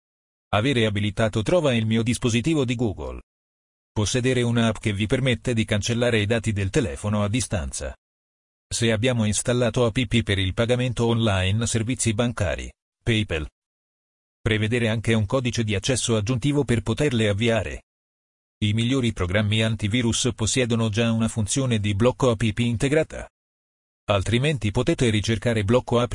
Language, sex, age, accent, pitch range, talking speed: Italian, male, 40-59, native, 105-120 Hz, 135 wpm